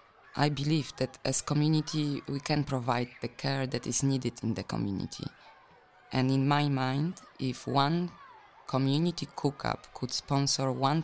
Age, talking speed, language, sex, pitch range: 20-39, 145 wpm, English, female, 130-155 Hz